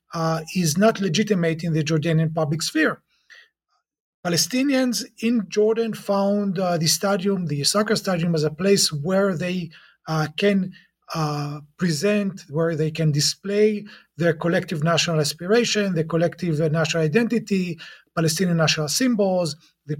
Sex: male